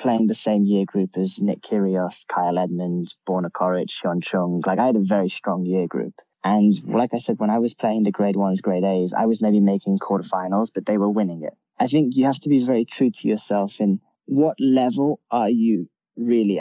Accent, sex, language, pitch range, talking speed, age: British, male, English, 95-120 Hz, 220 wpm, 10-29